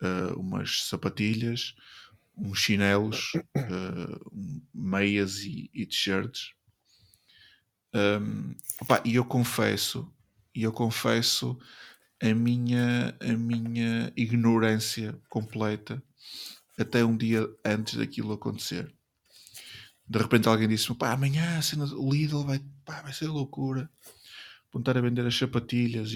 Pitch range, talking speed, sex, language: 100-125 Hz, 110 wpm, male, Portuguese